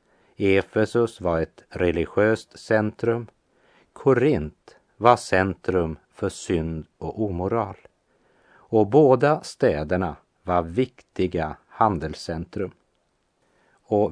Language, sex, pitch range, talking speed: Swedish, male, 90-115 Hz, 80 wpm